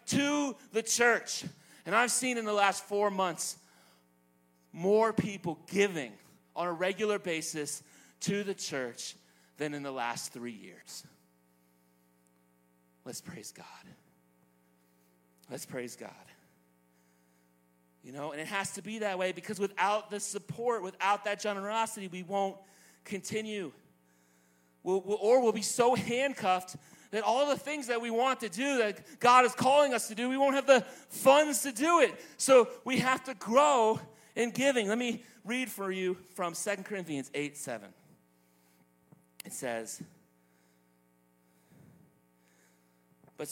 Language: English